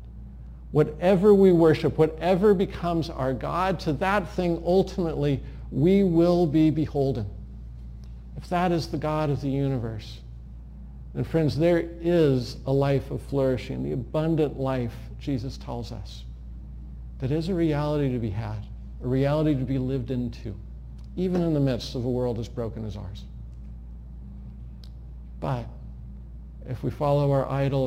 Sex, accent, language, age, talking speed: male, American, English, 50-69, 145 wpm